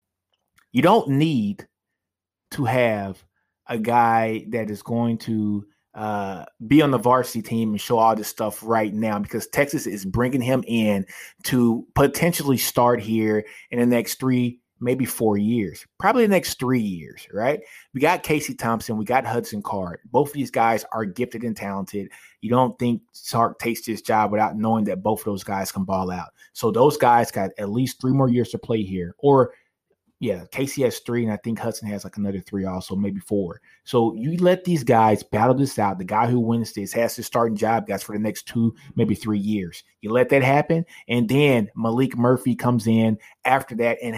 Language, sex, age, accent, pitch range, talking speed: English, male, 20-39, American, 105-130 Hz, 200 wpm